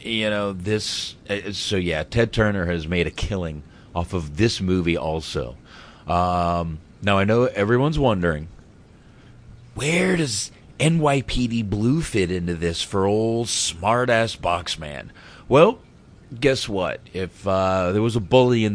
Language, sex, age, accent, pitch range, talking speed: English, male, 30-49, American, 85-110 Hz, 140 wpm